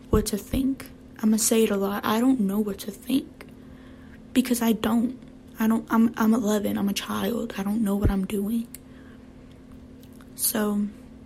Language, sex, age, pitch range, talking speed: English, female, 10-29, 220-245 Hz, 175 wpm